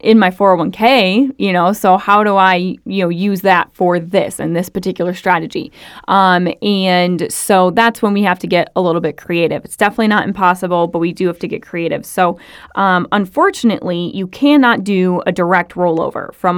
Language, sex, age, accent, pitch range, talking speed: English, female, 20-39, American, 175-200 Hz, 190 wpm